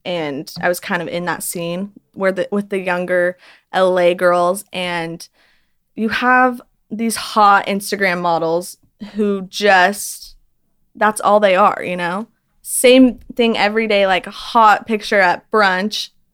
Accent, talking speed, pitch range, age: American, 145 wpm, 185-220 Hz, 20-39